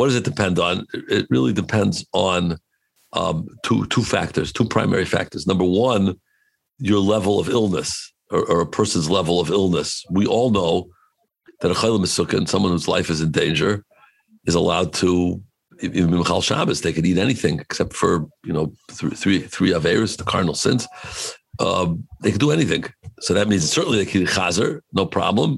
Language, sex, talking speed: English, male, 185 wpm